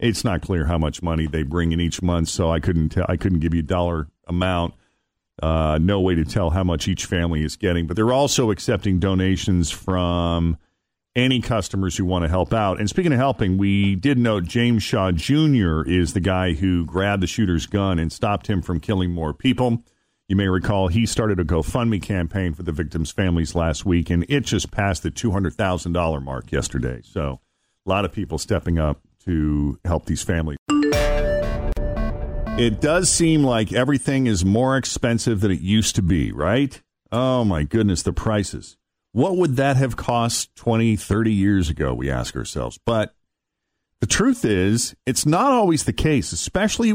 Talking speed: 185 wpm